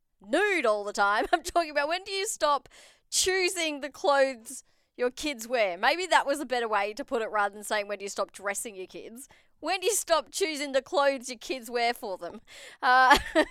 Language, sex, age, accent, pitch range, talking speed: English, female, 20-39, Australian, 215-295 Hz, 220 wpm